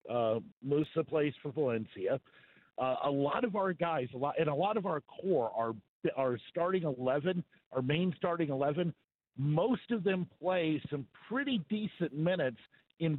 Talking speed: 160 wpm